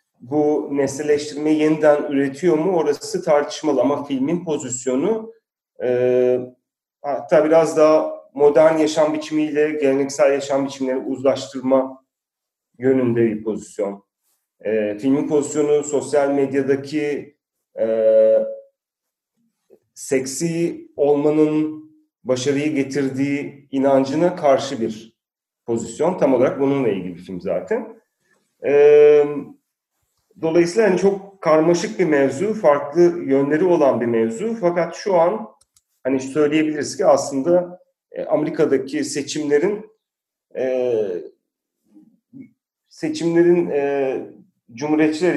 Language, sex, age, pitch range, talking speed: Turkish, male, 40-59, 135-175 Hz, 90 wpm